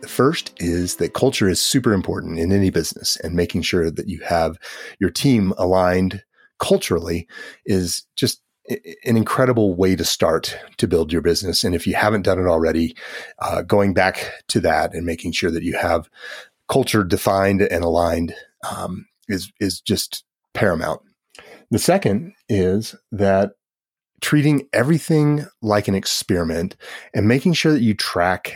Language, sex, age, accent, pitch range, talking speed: English, male, 30-49, American, 90-110 Hz, 155 wpm